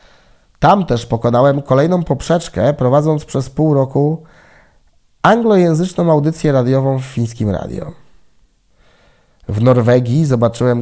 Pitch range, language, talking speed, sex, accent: 120-155 Hz, Polish, 100 wpm, male, native